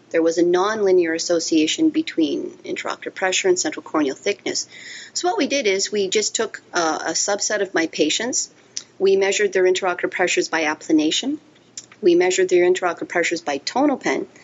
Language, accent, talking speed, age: English, American, 165 wpm, 40-59